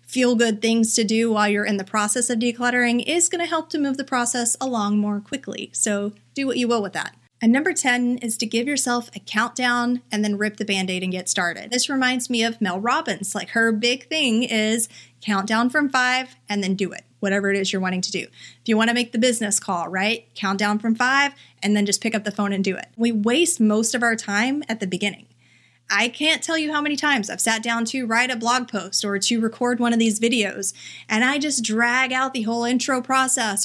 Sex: female